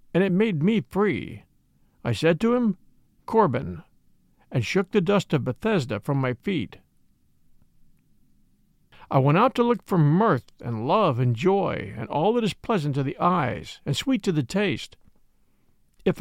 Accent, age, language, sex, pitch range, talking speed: American, 50-69, English, male, 130-205 Hz, 165 wpm